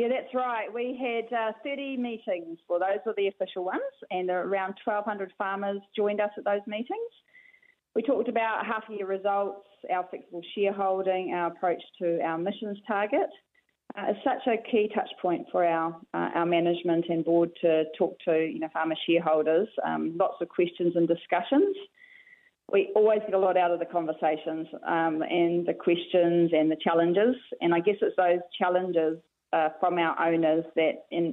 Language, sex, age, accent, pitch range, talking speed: English, female, 30-49, Australian, 170-215 Hz, 180 wpm